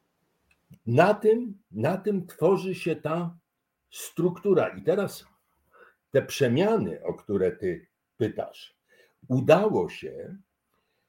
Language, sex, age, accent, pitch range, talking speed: Polish, male, 60-79, native, 125-170 Hz, 95 wpm